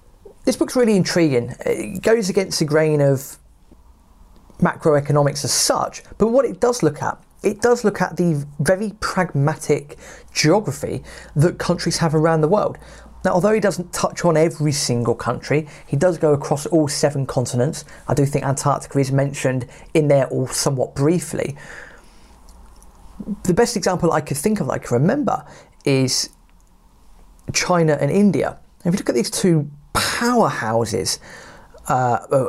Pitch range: 140-190 Hz